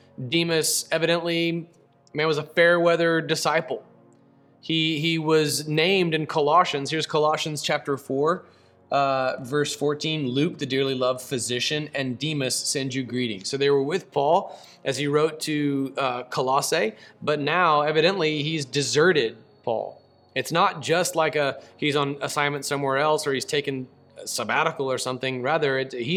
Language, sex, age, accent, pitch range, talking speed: English, male, 30-49, American, 130-160 Hz, 155 wpm